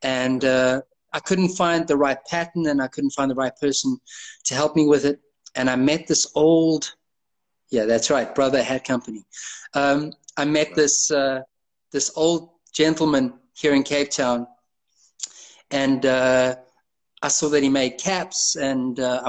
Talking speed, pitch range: 165 wpm, 135-160 Hz